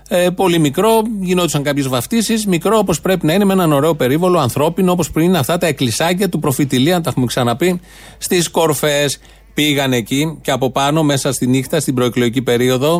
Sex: male